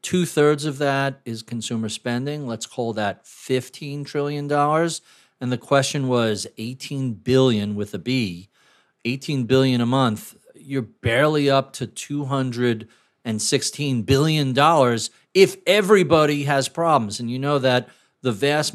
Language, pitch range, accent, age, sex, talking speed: English, 120-165 Hz, American, 40-59, male, 130 wpm